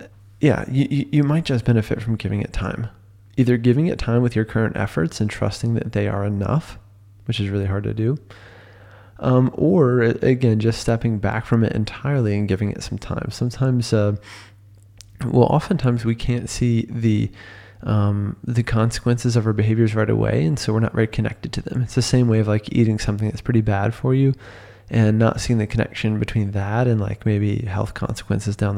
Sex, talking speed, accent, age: male, 195 wpm, American, 20-39